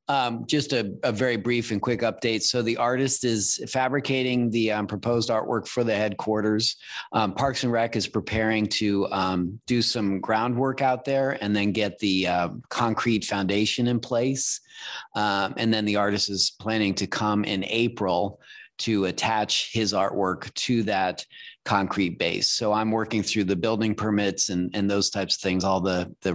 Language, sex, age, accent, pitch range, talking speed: English, male, 30-49, American, 100-120 Hz, 180 wpm